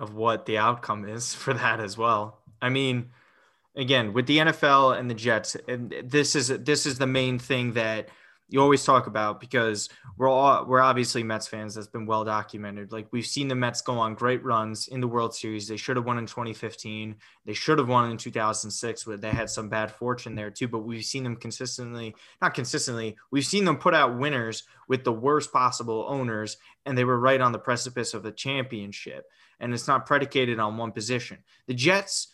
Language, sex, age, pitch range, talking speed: English, male, 20-39, 110-135 Hz, 205 wpm